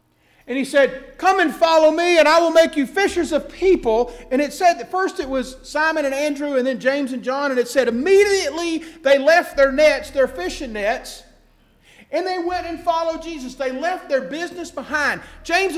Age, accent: 50-69, American